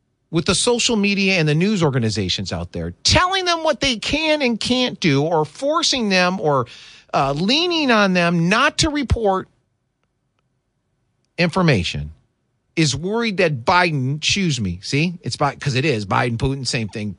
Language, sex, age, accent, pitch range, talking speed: English, male, 40-59, American, 115-180 Hz, 160 wpm